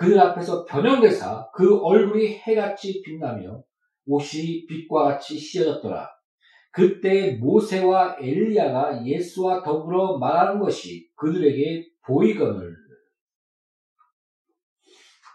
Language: Korean